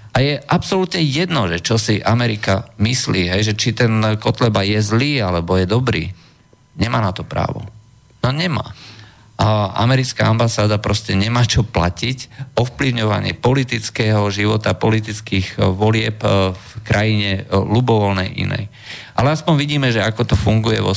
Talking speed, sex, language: 140 wpm, male, Slovak